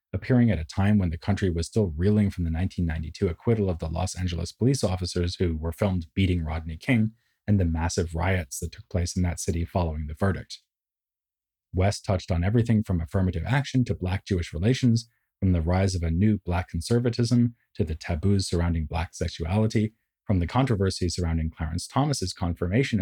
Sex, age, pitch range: male, 30-49, 85-105 Hz